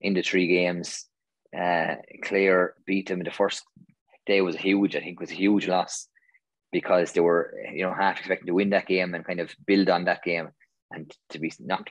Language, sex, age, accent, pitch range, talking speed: English, male, 20-39, Irish, 90-100 Hz, 220 wpm